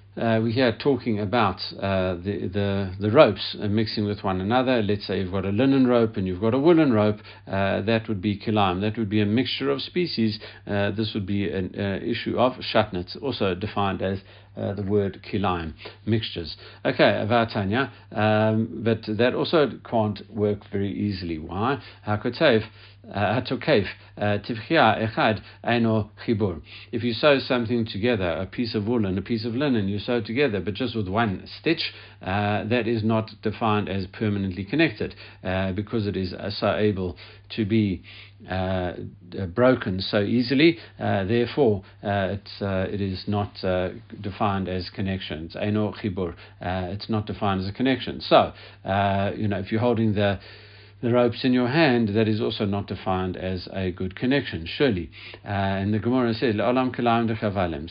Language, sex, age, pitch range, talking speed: English, male, 50-69, 100-115 Hz, 160 wpm